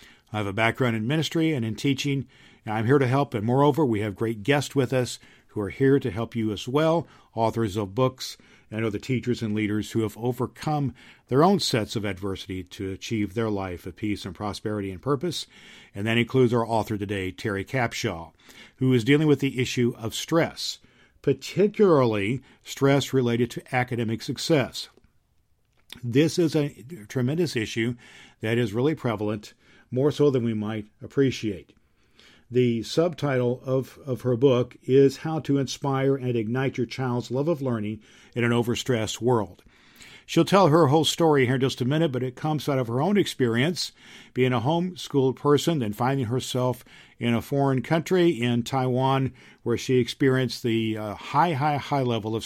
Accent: American